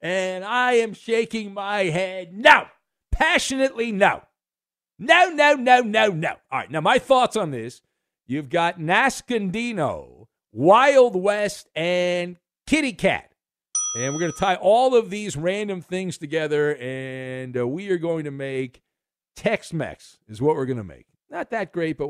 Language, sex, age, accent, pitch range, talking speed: English, male, 50-69, American, 170-250 Hz, 160 wpm